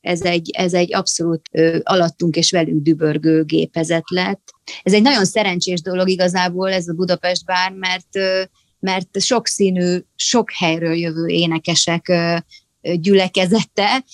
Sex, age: female, 30-49